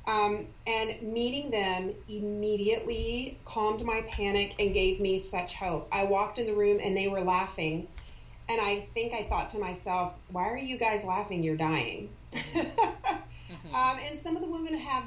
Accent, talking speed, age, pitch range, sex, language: American, 170 wpm, 30-49, 190-245 Hz, female, English